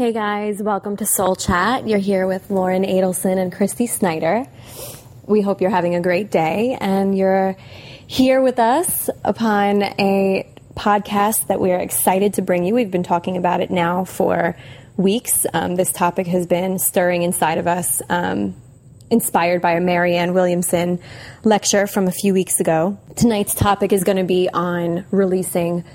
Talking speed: 170 wpm